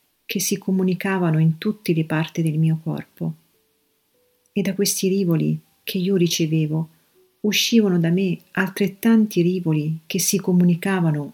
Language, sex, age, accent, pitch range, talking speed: Italian, female, 40-59, native, 160-195 Hz, 130 wpm